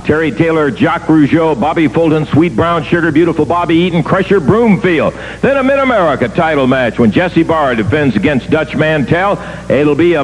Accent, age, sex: American, 60-79, male